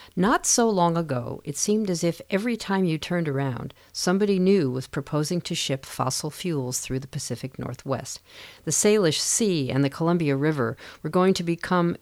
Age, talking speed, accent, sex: 50-69, 180 wpm, American, female